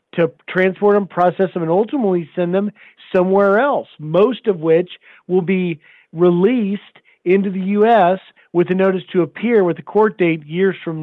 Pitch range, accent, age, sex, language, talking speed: 165-210 Hz, American, 40-59, male, English, 170 wpm